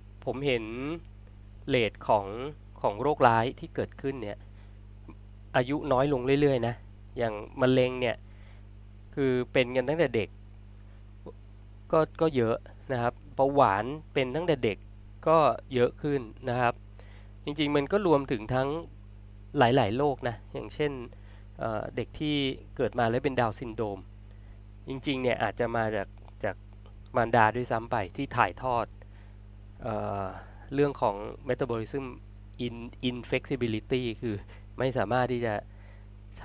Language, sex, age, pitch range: Thai, male, 20-39, 100-130 Hz